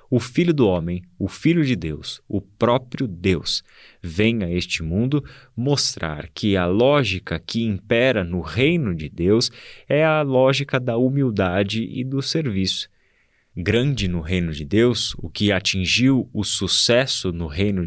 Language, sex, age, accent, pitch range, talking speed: Portuguese, male, 20-39, Brazilian, 95-125 Hz, 150 wpm